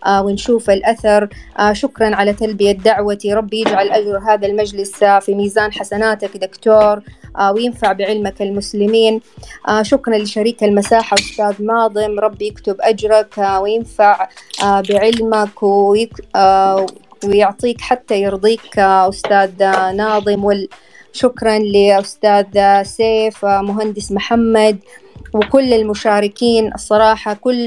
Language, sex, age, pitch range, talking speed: Arabic, female, 20-39, 200-220 Hz, 90 wpm